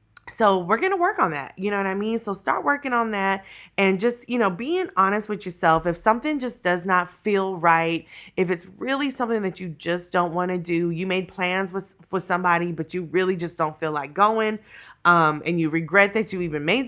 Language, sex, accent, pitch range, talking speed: English, female, American, 170-215 Hz, 230 wpm